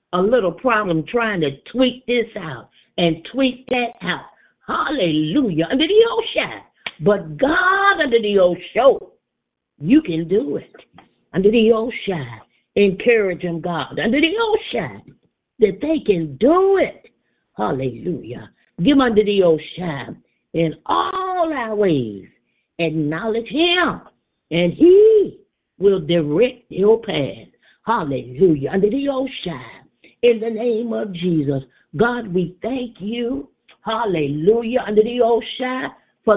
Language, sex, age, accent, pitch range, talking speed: English, female, 50-69, American, 175-265 Hz, 135 wpm